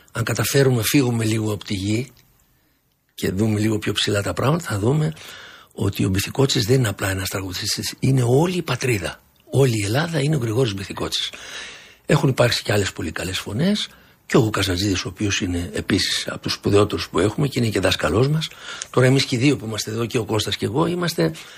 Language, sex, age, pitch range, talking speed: Greek, male, 60-79, 105-140 Hz, 205 wpm